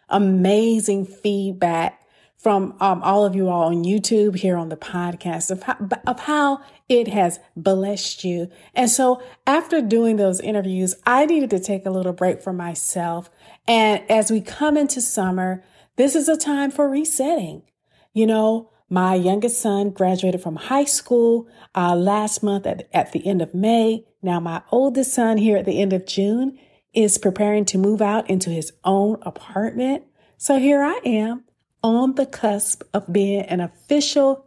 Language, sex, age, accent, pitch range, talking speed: English, female, 40-59, American, 185-230 Hz, 165 wpm